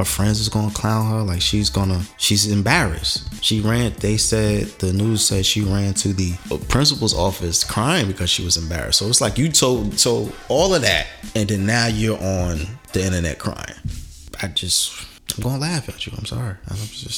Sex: male